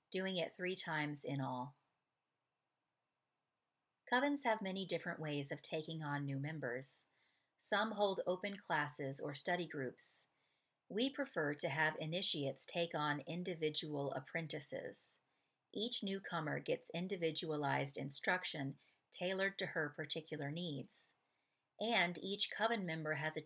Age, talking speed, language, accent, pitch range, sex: 40-59, 125 wpm, English, American, 150-180 Hz, female